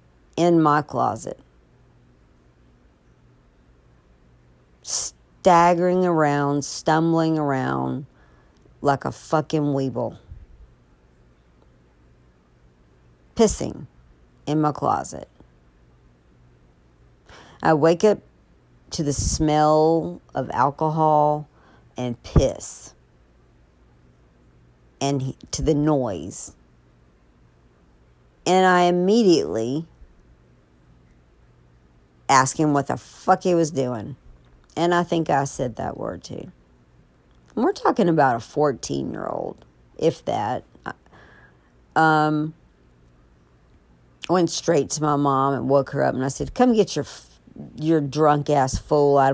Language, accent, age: English, American, 50-69